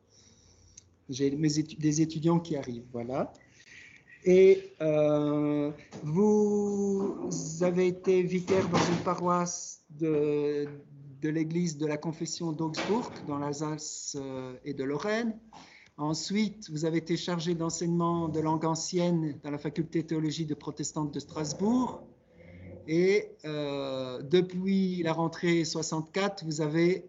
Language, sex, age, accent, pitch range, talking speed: French, male, 50-69, French, 145-175 Hz, 120 wpm